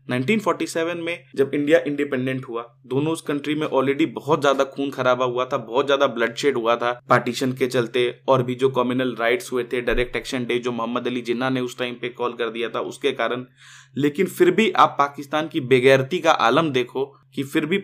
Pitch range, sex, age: 125-150 Hz, male, 20-39